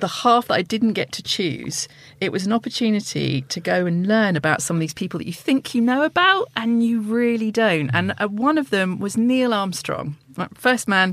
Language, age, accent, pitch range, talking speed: English, 40-59, British, 160-235 Hz, 215 wpm